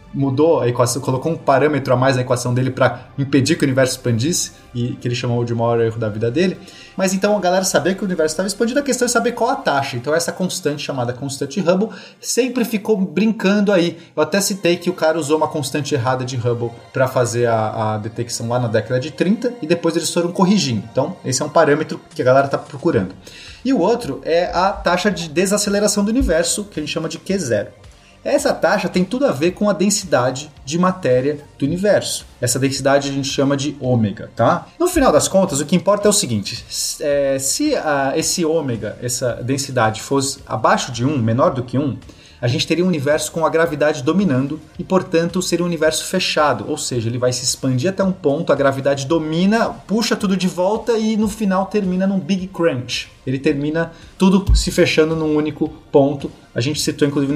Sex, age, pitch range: male, 30-49, 130-185 Hz